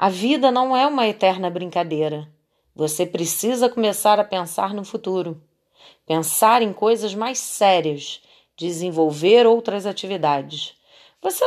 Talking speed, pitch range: 120 wpm, 160-220 Hz